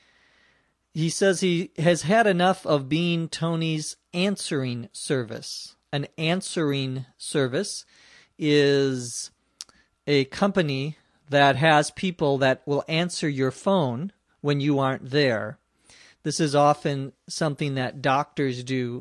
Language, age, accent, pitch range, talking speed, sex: English, 40-59, American, 135-160 Hz, 115 wpm, male